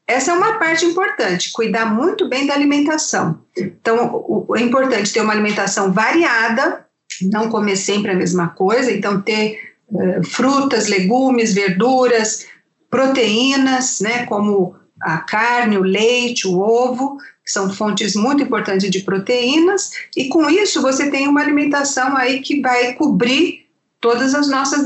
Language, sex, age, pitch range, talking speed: Portuguese, female, 50-69, 210-280 Hz, 140 wpm